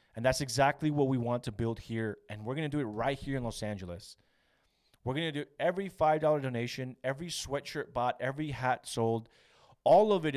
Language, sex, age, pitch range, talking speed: English, male, 30-49, 115-145 Hz, 210 wpm